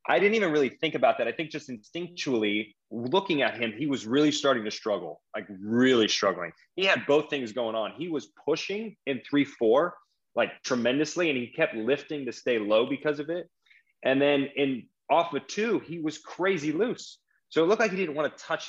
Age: 20-39